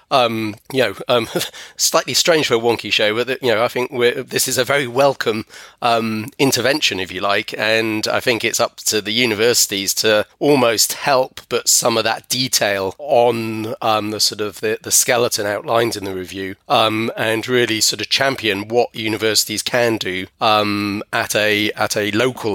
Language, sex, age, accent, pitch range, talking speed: English, male, 30-49, British, 100-120 Hz, 190 wpm